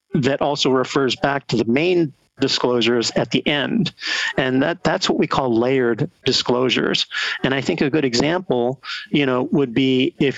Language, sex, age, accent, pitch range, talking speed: English, male, 50-69, American, 120-145 Hz, 175 wpm